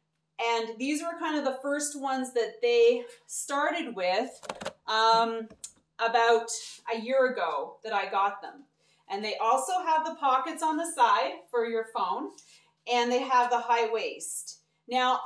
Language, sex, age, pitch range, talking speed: English, female, 30-49, 225-275 Hz, 155 wpm